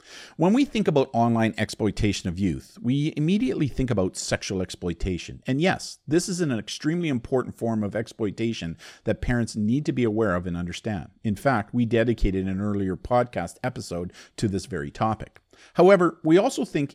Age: 50-69